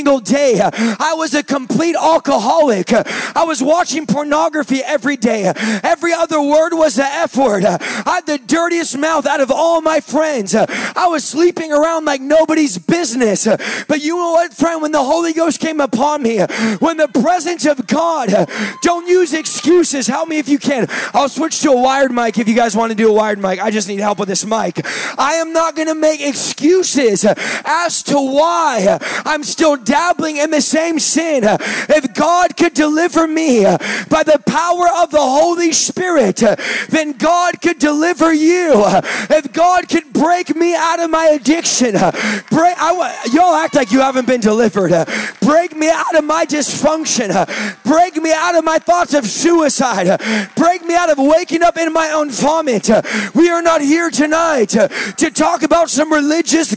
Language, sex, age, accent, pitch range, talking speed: English, male, 20-39, American, 265-330 Hz, 180 wpm